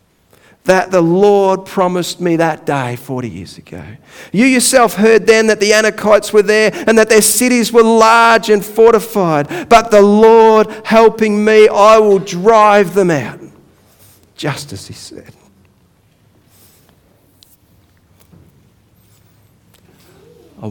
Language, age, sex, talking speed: English, 50-69, male, 120 wpm